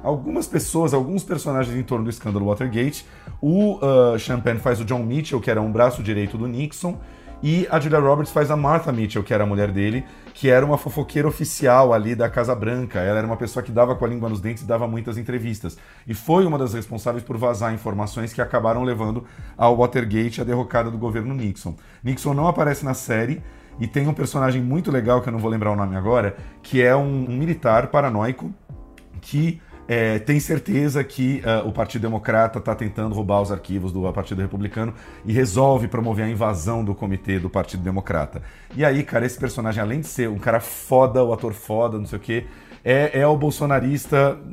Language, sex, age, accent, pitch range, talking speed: Portuguese, male, 40-59, Brazilian, 110-135 Hz, 205 wpm